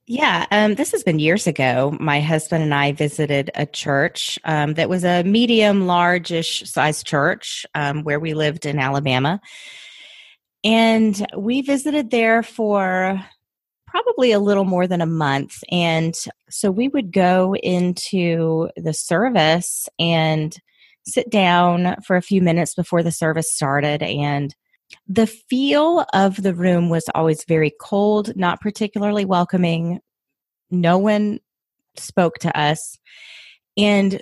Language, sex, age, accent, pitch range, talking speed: English, female, 30-49, American, 160-210 Hz, 135 wpm